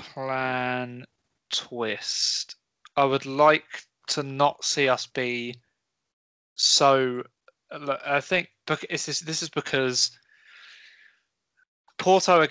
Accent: British